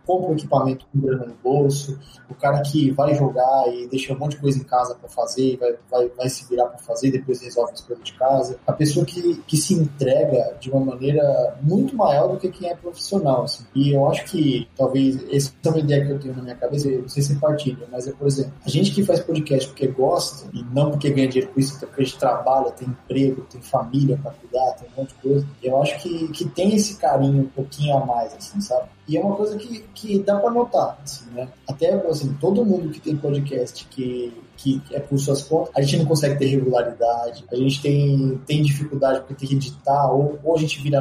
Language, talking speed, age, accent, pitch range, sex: Portuguese, 240 wpm, 20-39, Brazilian, 130-150 Hz, male